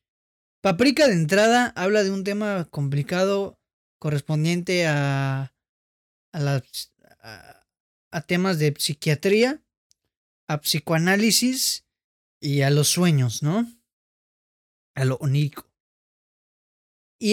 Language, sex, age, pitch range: Spanish, male, 20-39, 150-200 Hz